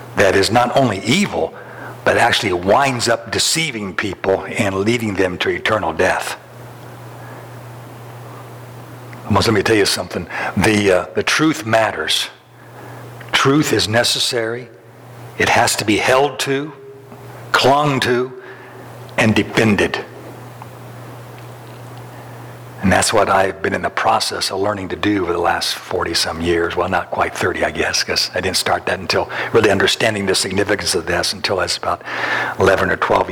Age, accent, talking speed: 60-79, American, 145 wpm